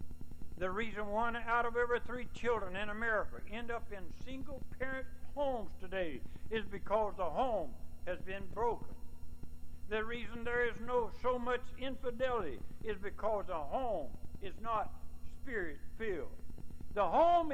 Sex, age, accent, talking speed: male, 60-79, American, 145 wpm